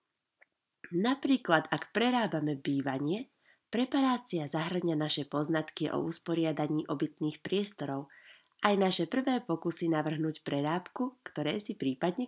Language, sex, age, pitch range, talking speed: Slovak, female, 30-49, 150-210 Hz, 105 wpm